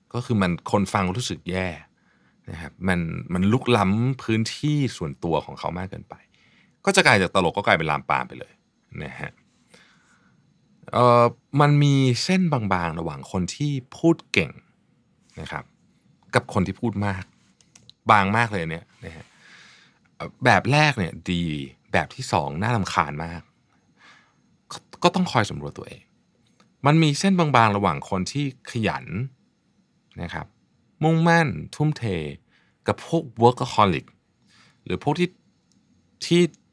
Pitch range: 90-125 Hz